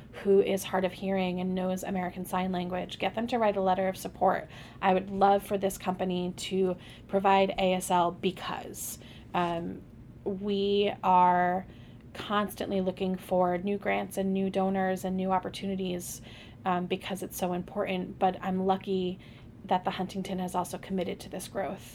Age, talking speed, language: 20-39, 160 wpm, English